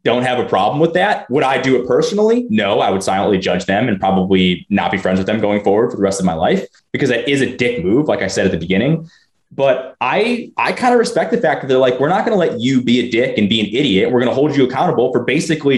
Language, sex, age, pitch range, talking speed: English, male, 20-39, 95-155 Hz, 290 wpm